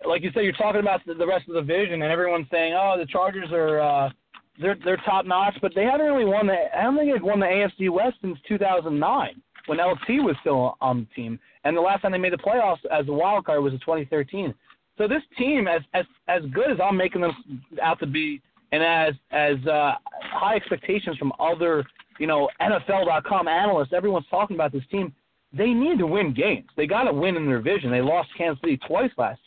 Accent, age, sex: American, 30-49, male